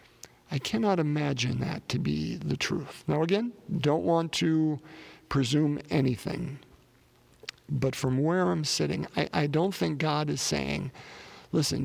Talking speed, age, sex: 140 wpm, 50-69, male